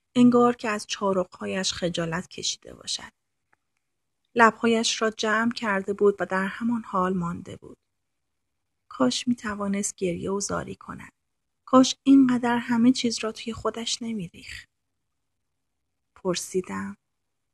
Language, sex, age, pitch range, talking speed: Persian, female, 30-49, 180-220 Hz, 115 wpm